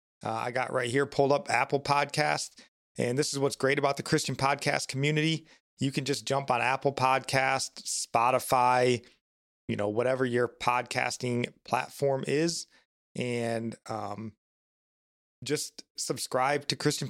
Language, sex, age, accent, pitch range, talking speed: English, male, 30-49, American, 115-140 Hz, 140 wpm